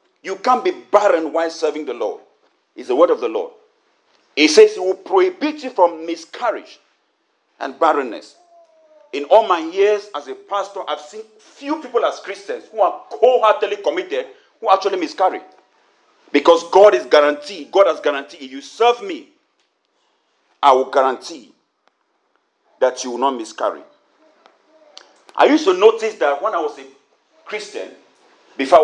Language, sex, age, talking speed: English, male, 40-59, 155 wpm